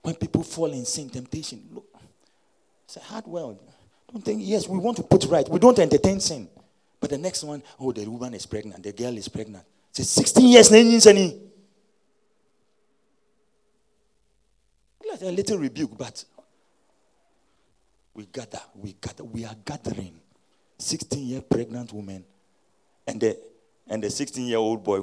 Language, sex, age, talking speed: English, male, 40-59, 150 wpm